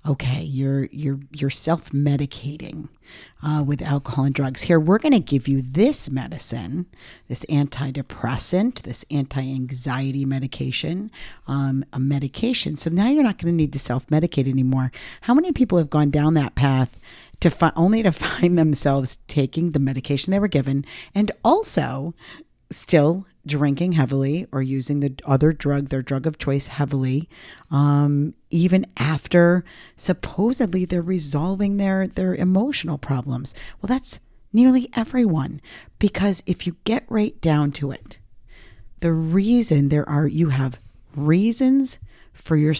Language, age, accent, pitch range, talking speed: English, 50-69, American, 135-175 Hz, 145 wpm